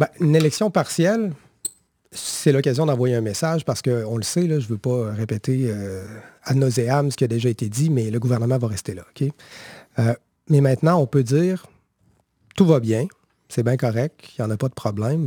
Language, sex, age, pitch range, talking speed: French, male, 40-59, 115-150 Hz, 210 wpm